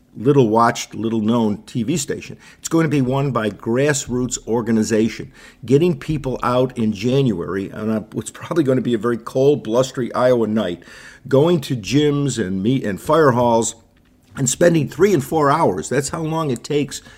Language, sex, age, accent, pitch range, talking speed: English, male, 50-69, American, 115-140 Hz, 180 wpm